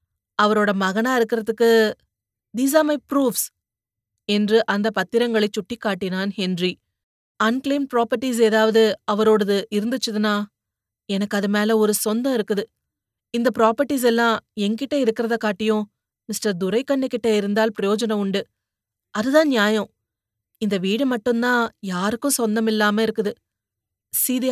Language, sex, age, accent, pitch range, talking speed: Tamil, female, 30-49, native, 205-235 Hz, 110 wpm